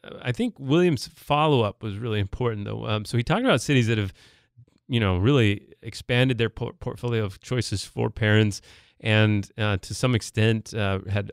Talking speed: 185 wpm